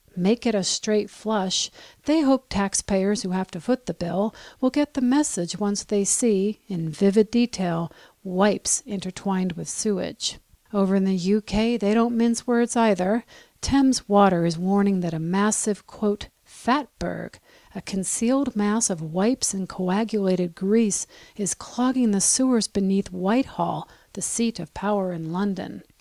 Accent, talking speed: American, 150 wpm